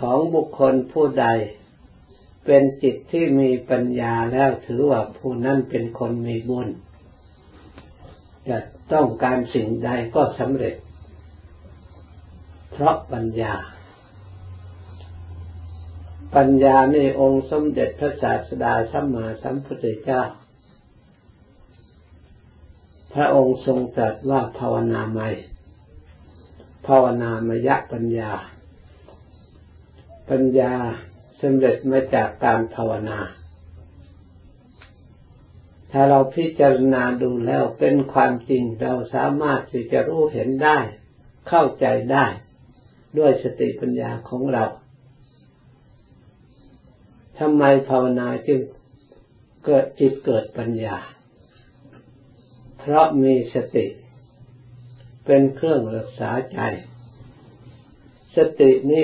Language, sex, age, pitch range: Thai, male, 60-79, 90-135 Hz